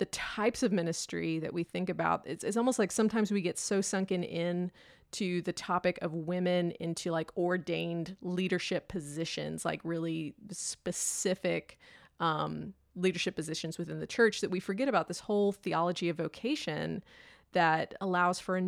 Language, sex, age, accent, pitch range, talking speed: English, female, 30-49, American, 170-195 Hz, 160 wpm